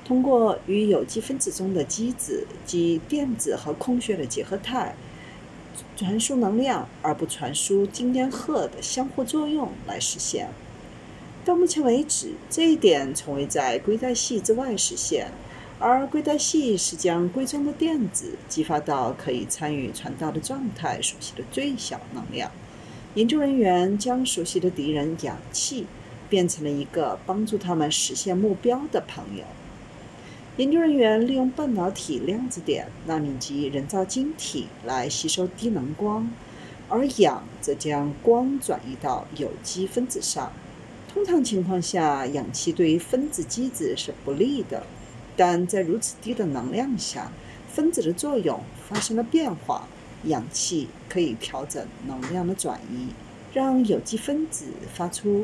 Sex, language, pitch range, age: female, Chinese, 170-255 Hz, 50-69